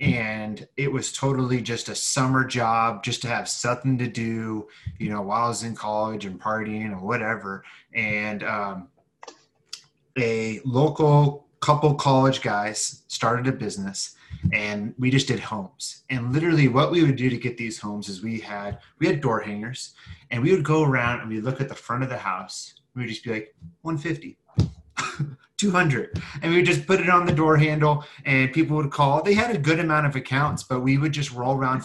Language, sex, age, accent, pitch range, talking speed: English, male, 30-49, American, 115-145 Hz, 200 wpm